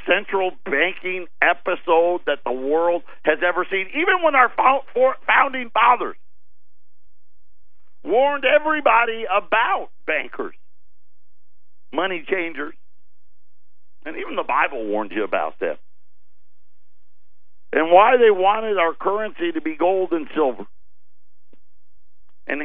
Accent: American